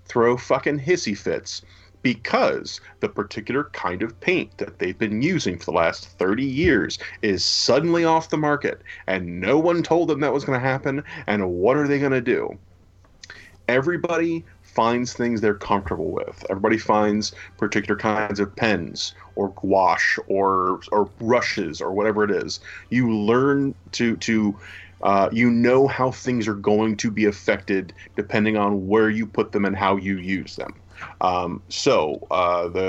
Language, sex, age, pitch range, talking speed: English, male, 30-49, 90-115 Hz, 165 wpm